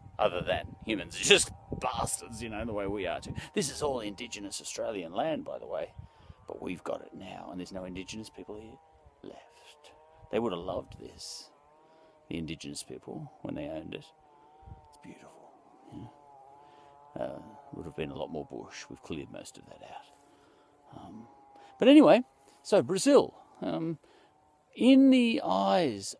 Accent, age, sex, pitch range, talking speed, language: Australian, 40-59, male, 105-155 Hz, 165 wpm, English